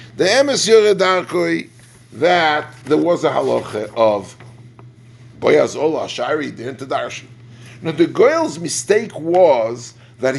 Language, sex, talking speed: English, male, 105 wpm